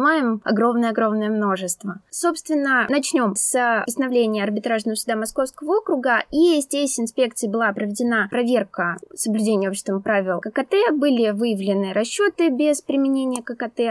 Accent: native